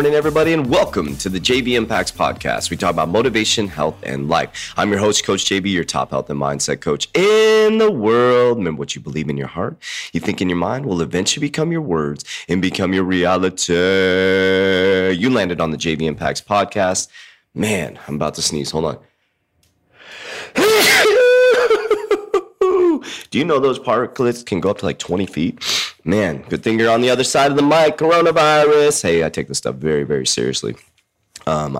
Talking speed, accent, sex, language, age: 185 wpm, American, male, English, 30-49